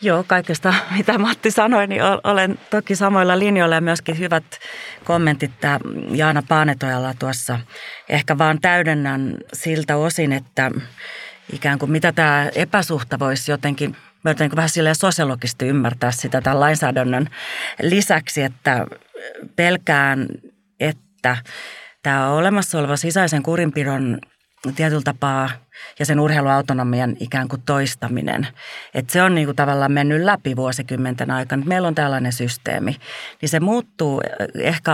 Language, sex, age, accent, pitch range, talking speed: Finnish, female, 30-49, native, 135-180 Hz, 125 wpm